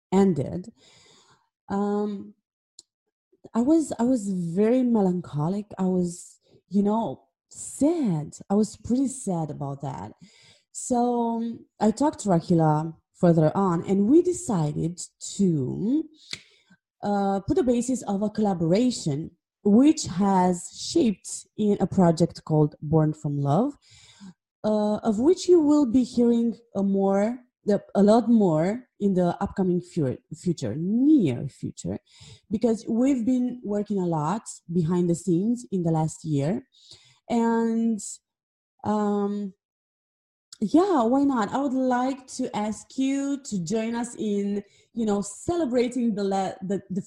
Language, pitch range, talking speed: English, 175-240 Hz, 130 wpm